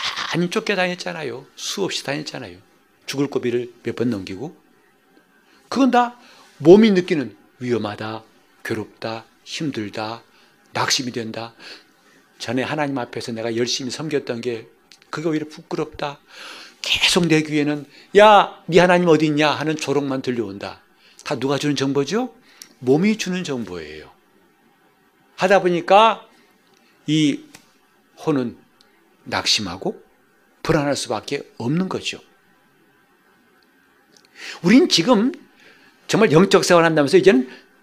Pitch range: 130-215 Hz